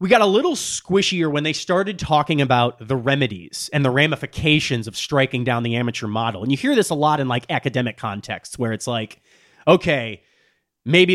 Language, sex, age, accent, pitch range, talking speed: English, male, 30-49, American, 130-170 Hz, 195 wpm